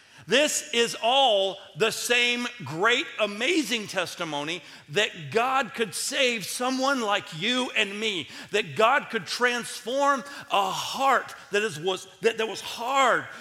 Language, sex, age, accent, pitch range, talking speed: English, male, 50-69, American, 195-255 Hz, 125 wpm